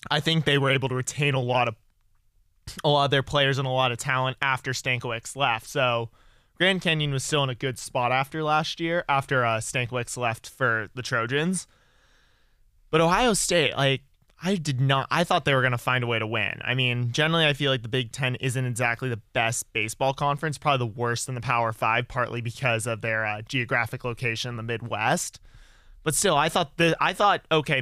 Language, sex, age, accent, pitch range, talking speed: English, male, 20-39, American, 120-140 Hz, 215 wpm